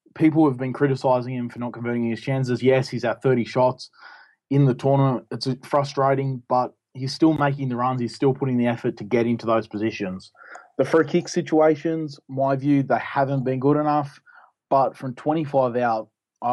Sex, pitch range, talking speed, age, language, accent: male, 115-135 Hz, 190 wpm, 20-39, English, Australian